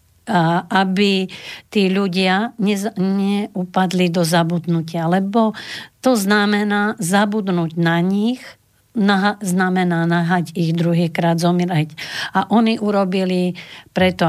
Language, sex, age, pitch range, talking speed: Slovak, female, 50-69, 170-200 Hz, 95 wpm